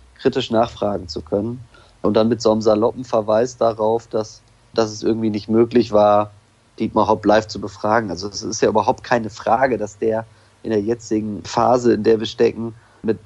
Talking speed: 190 wpm